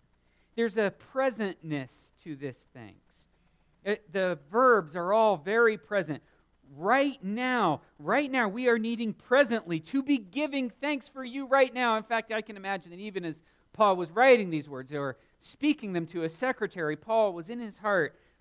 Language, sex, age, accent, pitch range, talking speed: English, male, 40-59, American, 160-250 Hz, 170 wpm